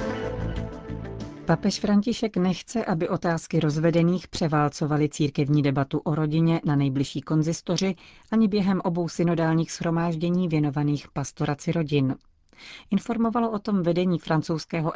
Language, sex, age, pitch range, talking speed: Czech, female, 40-59, 145-175 Hz, 110 wpm